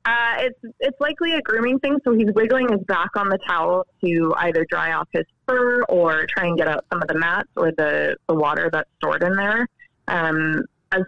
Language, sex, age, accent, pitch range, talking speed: English, female, 20-39, American, 160-205 Hz, 215 wpm